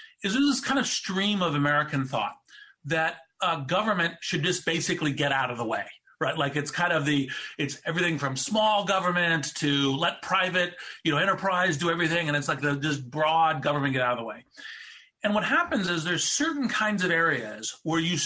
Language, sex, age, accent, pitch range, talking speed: English, male, 40-59, American, 145-195 Hz, 200 wpm